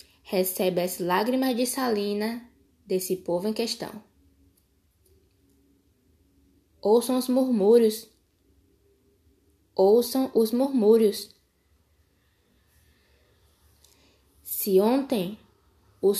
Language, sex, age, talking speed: Portuguese, female, 10-29, 65 wpm